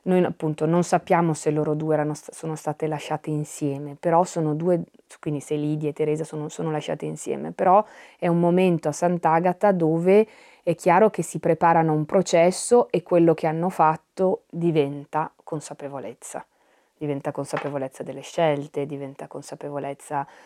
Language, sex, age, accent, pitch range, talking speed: Italian, female, 30-49, native, 150-170 Hz, 155 wpm